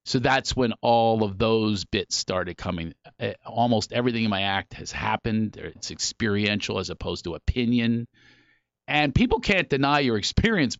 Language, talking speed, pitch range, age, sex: English, 155 wpm, 95-125 Hz, 40-59, male